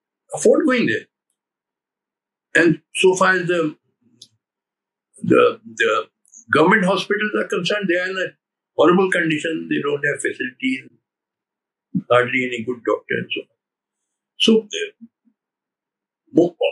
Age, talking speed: 60-79, 110 wpm